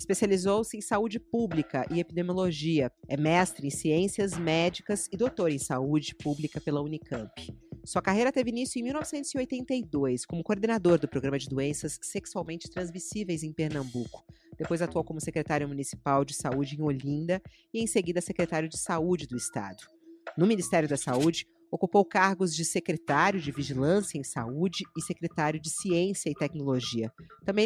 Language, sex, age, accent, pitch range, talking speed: Portuguese, female, 40-59, Brazilian, 150-195 Hz, 150 wpm